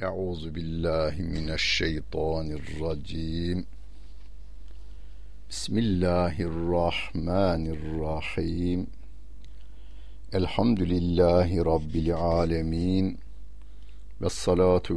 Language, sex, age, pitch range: Turkish, male, 60-79, 80-90 Hz